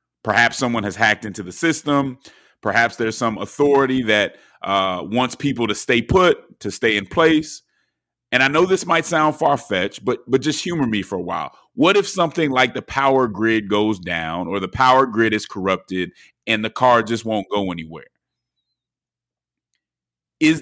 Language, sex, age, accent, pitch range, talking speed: English, male, 30-49, American, 105-130 Hz, 170 wpm